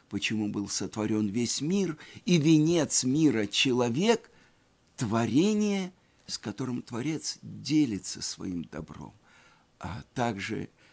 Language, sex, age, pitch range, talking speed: Russian, male, 60-79, 110-160 Hz, 105 wpm